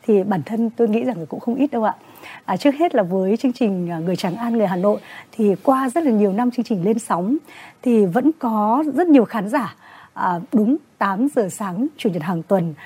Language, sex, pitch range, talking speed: Vietnamese, female, 195-250 Hz, 235 wpm